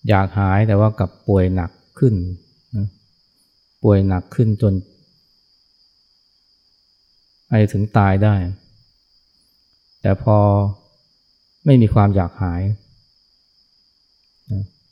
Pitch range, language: 95-110 Hz, Thai